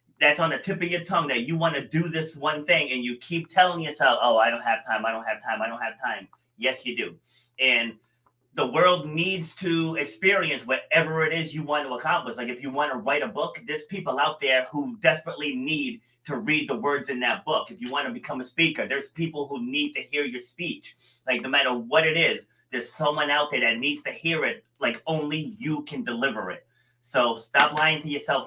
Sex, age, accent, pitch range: male, 30-49, American, 140-180 Hz